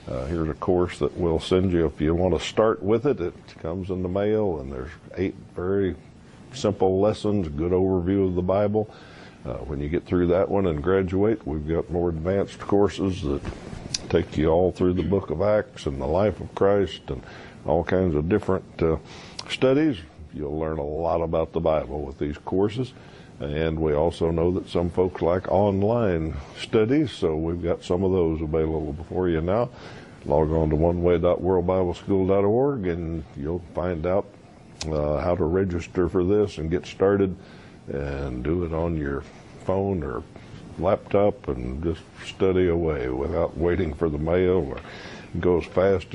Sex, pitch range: male, 80-95 Hz